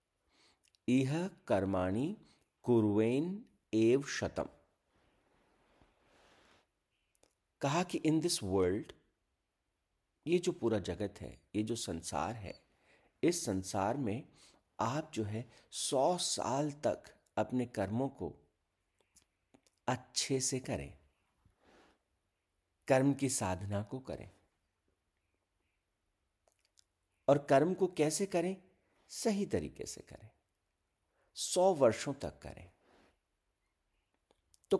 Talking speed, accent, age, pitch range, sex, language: 90 wpm, native, 50-69, 90-140 Hz, male, Hindi